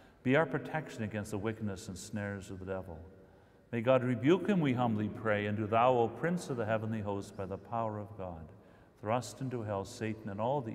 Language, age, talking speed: English, 50-69, 220 wpm